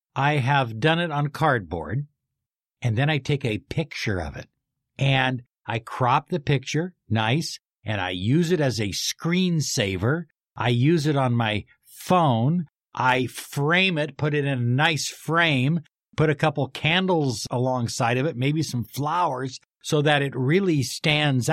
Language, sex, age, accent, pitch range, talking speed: English, male, 60-79, American, 115-150 Hz, 160 wpm